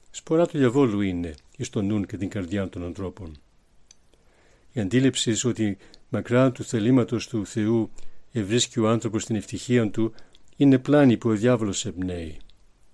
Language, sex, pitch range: Greek, male, 95-125 Hz